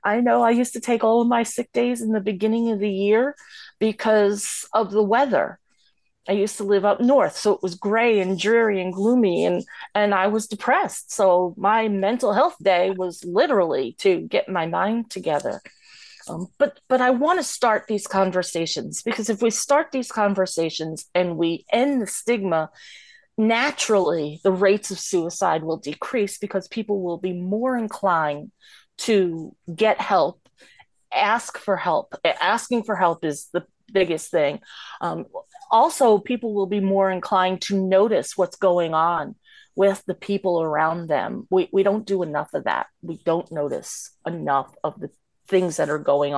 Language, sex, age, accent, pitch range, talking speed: English, female, 30-49, American, 180-230 Hz, 170 wpm